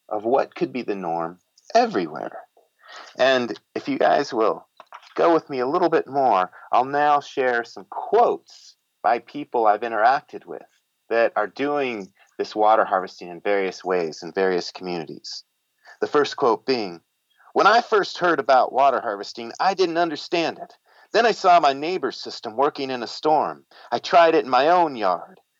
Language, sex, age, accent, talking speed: English, male, 40-59, American, 170 wpm